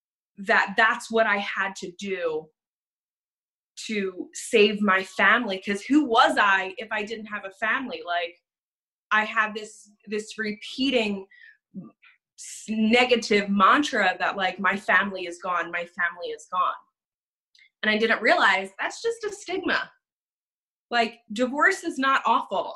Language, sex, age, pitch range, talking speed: English, female, 20-39, 200-260 Hz, 135 wpm